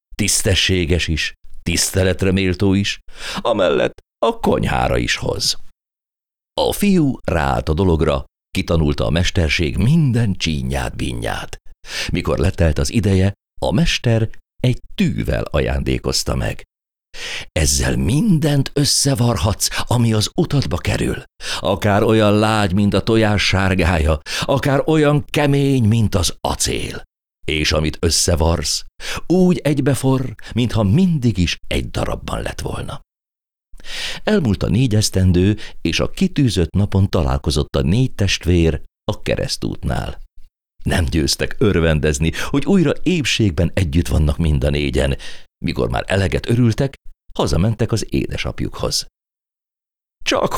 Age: 50-69